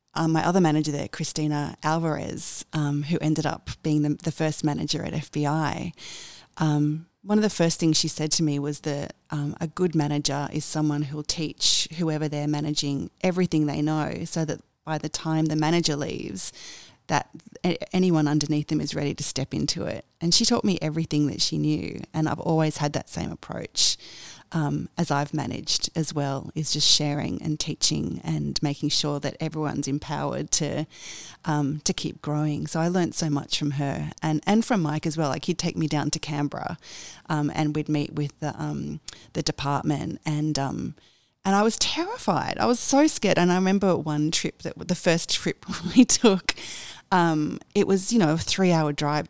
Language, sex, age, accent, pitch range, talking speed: English, female, 30-49, Australian, 150-165 Hz, 190 wpm